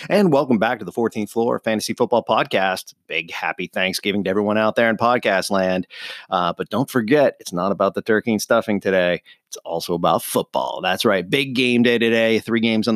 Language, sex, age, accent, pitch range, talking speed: English, male, 30-49, American, 95-115 Hz, 210 wpm